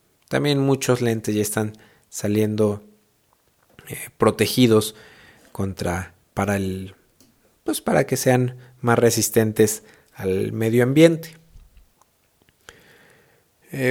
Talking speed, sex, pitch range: 90 wpm, male, 105-135 Hz